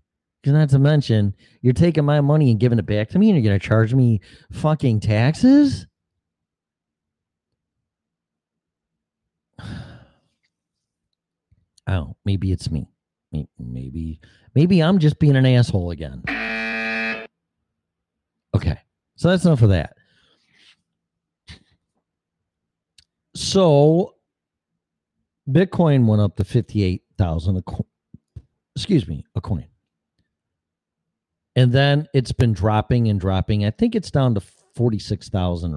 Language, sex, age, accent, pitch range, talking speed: English, male, 40-59, American, 95-145 Hz, 105 wpm